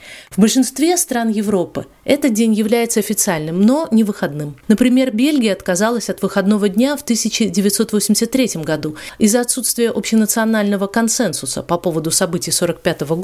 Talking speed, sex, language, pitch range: 125 wpm, female, Russian, 170-220 Hz